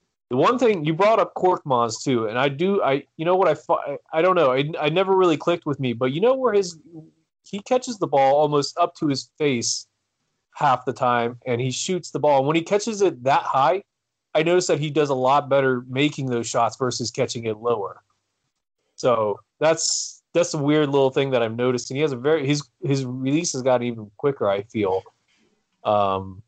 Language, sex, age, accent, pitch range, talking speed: English, male, 30-49, American, 110-150 Hz, 215 wpm